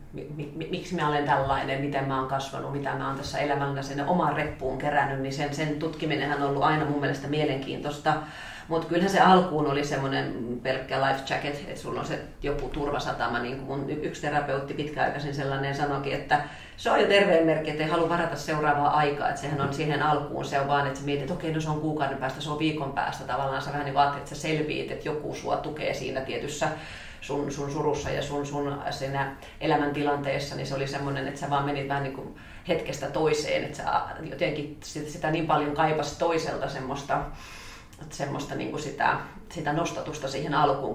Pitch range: 135-150 Hz